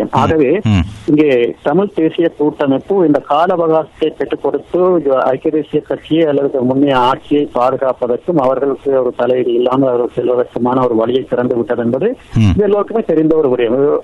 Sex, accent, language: male, native, Tamil